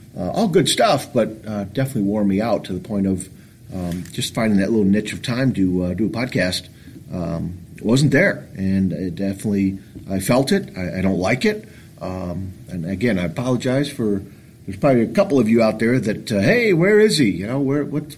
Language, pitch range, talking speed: English, 95-120 Hz, 220 wpm